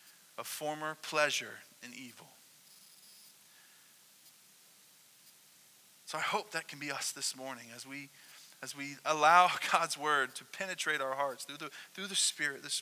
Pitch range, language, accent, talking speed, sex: 155-215 Hz, English, American, 145 wpm, male